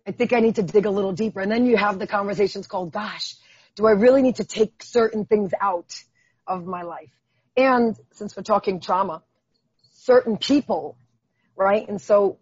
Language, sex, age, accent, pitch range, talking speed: English, female, 40-59, American, 180-220 Hz, 190 wpm